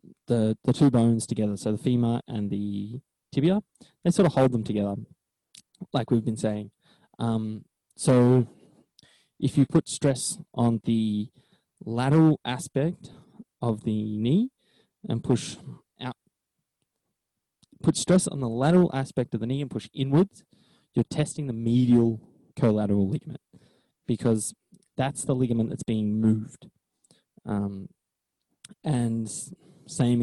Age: 20-39